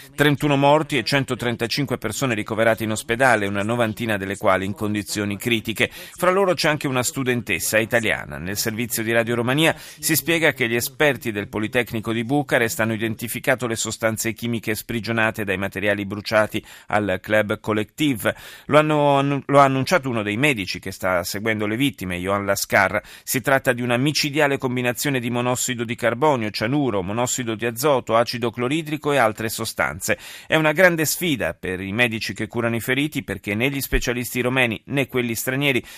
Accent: native